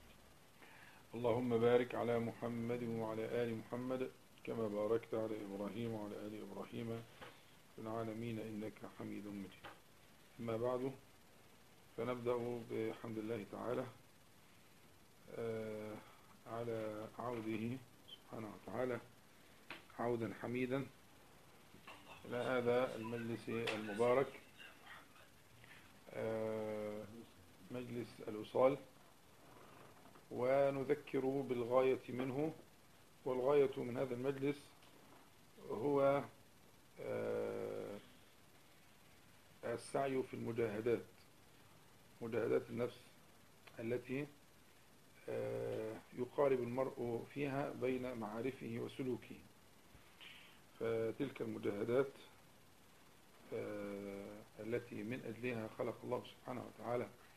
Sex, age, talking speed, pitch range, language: male, 50-69, 70 wpm, 110-125 Hz, Arabic